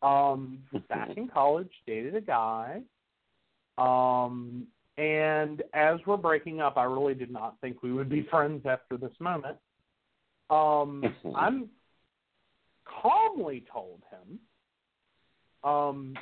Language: English